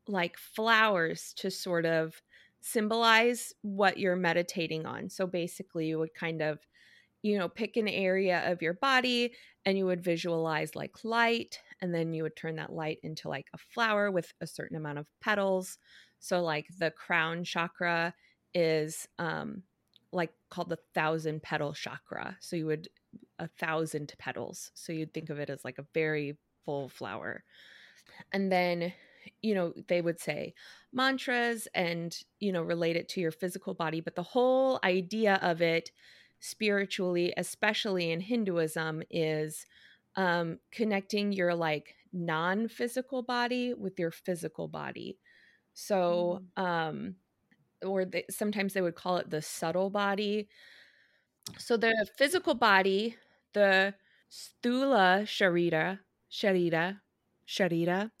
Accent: American